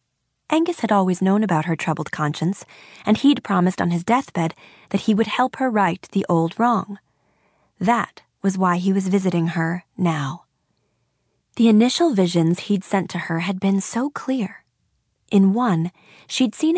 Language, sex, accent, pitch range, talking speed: English, female, American, 165-220 Hz, 165 wpm